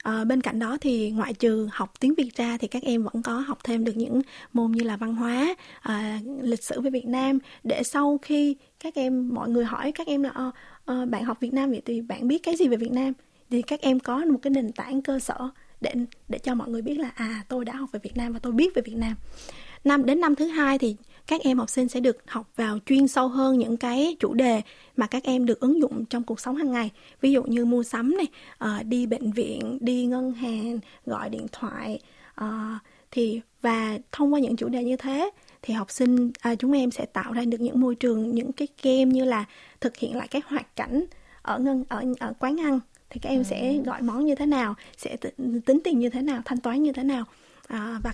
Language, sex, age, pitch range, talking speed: Vietnamese, female, 20-39, 235-270 Hz, 240 wpm